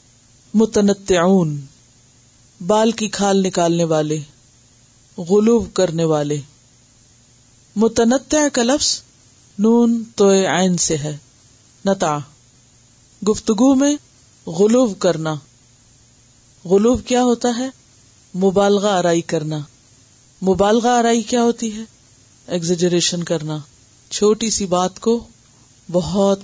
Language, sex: Urdu, female